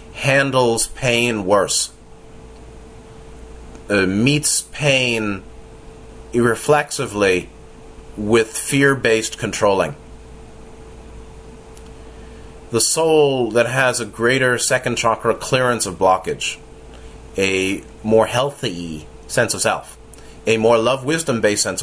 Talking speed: 85 wpm